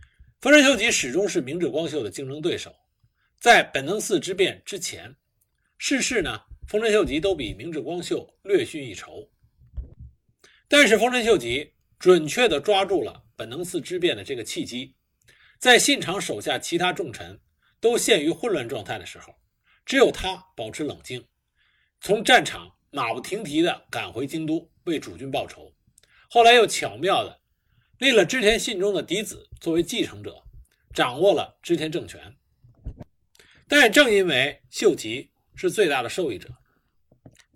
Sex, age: male, 50-69